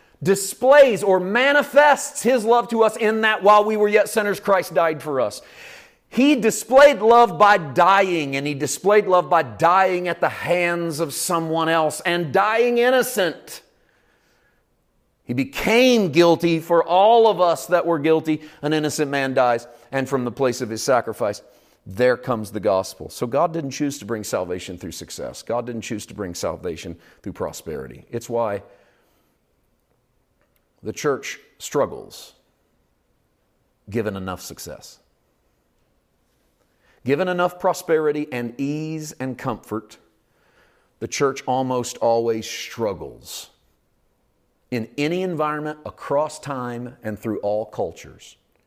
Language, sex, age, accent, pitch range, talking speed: English, male, 40-59, American, 115-185 Hz, 135 wpm